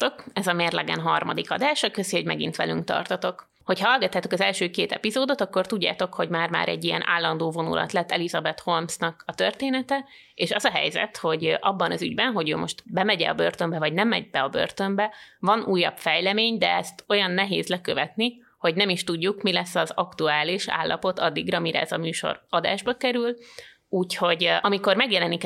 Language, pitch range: Hungarian, 165-205 Hz